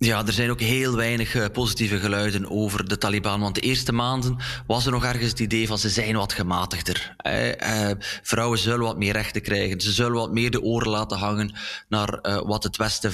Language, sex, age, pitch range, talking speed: Dutch, male, 20-39, 105-120 Hz, 200 wpm